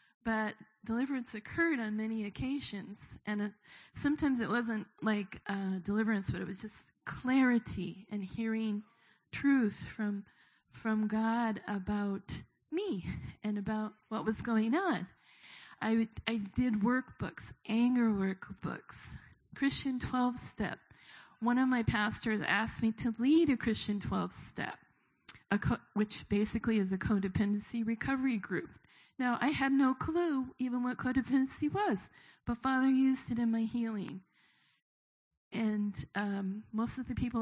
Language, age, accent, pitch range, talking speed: English, 20-39, American, 210-245 Hz, 130 wpm